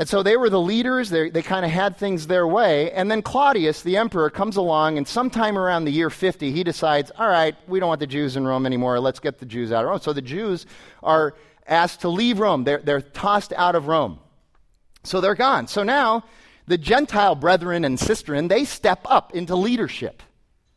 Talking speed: 215 wpm